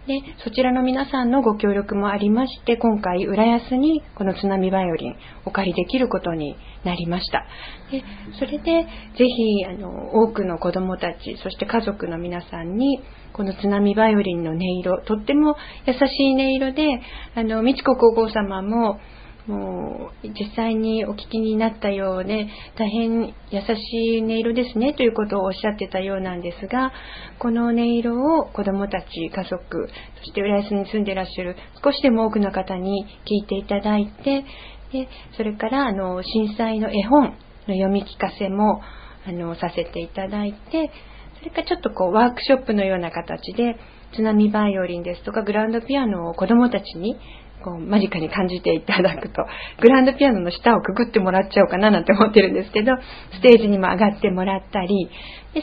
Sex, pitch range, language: female, 190-240 Hz, Japanese